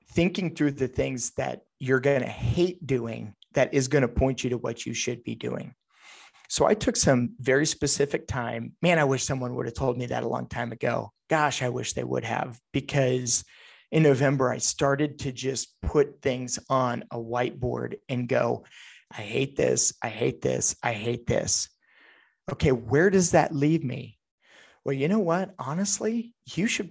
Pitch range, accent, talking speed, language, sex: 120-150 Hz, American, 185 wpm, English, male